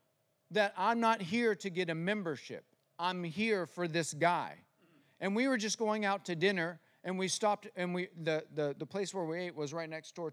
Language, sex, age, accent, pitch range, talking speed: English, male, 40-59, American, 145-190 Hz, 215 wpm